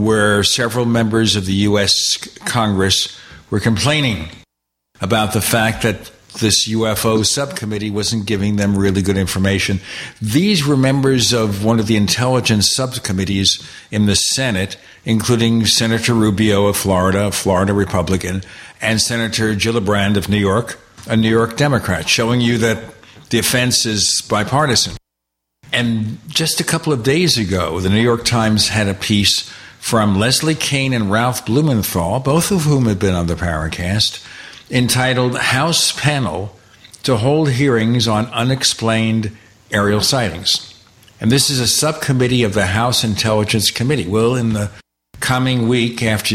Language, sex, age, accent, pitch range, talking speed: English, male, 60-79, American, 100-120 Hz, 145 wpm